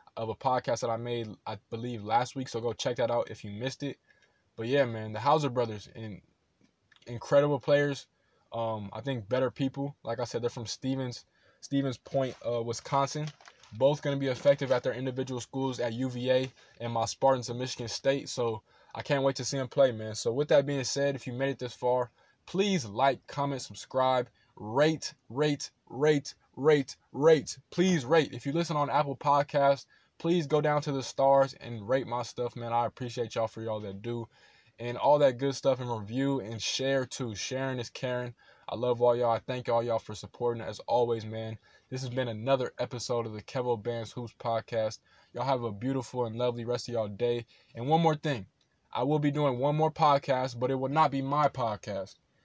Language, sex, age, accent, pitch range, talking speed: English, male, 20-39, American, 120-140 Hz, 205 wpm